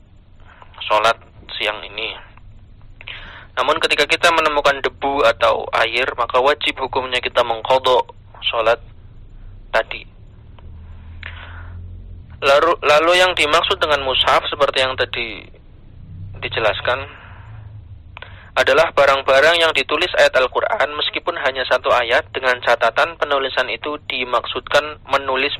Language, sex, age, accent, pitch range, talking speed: Indonesian, male, 20-39, native, 100-135 Hz, 100 wpm